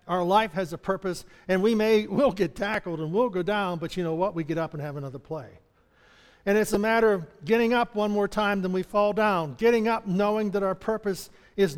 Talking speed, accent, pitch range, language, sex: 240 wpm, American, 165-215 Hz, English, male